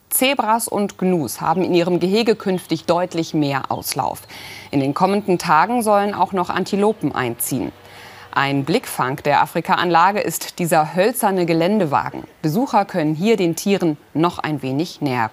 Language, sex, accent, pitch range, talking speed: German, female, German, 160-210 Hz, 145 wpm